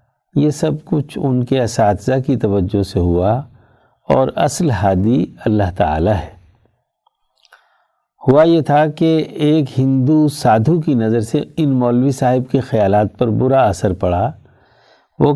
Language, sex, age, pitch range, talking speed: Urdu, male, 60-79, 110-135 Hz, 140 wpm